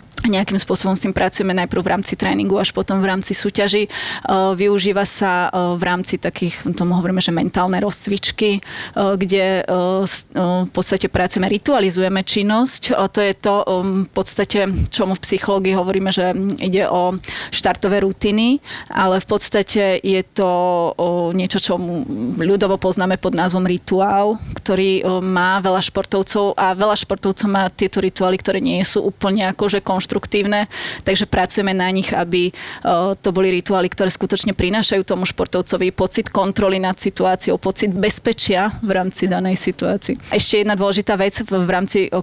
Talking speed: 150 wpm